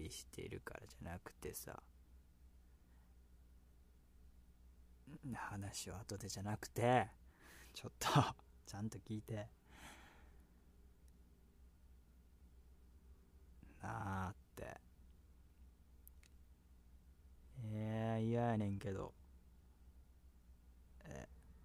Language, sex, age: Japanese, male, 20-39